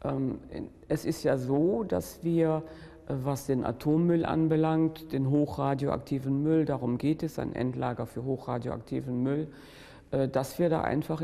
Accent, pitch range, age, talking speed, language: German, 135-160 Hz, 50-69, 135 wpm, German